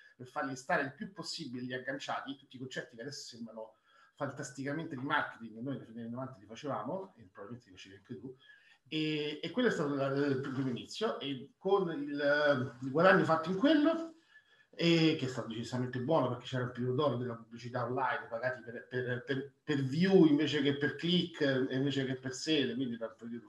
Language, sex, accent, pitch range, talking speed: Italian, male, native, 125-165 Hz, 195 wpm